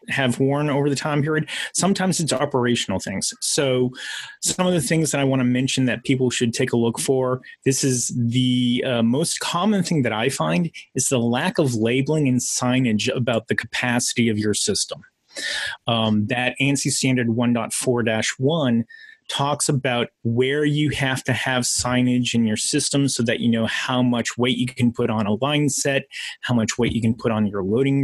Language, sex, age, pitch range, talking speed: English, male, 30-49, 120-145 Hz, 190 wpm